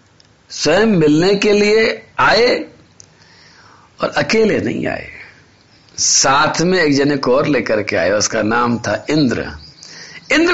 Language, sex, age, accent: Hindi, male, 50-69, native